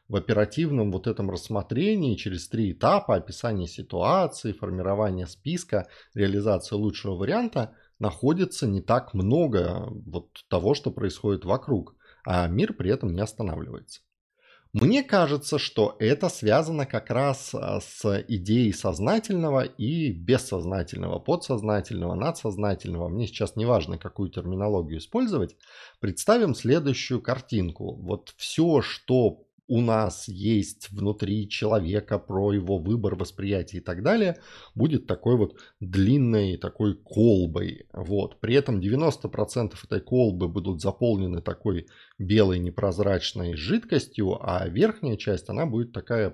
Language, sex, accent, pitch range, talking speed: Russian, male, native, 95-130 Hz, 120 wpm